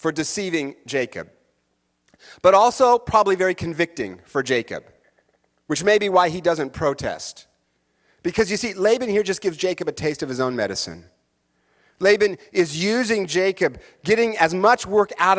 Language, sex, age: English, male, 40-59